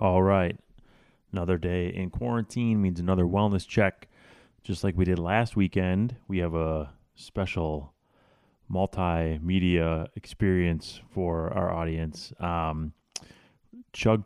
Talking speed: 110 wpm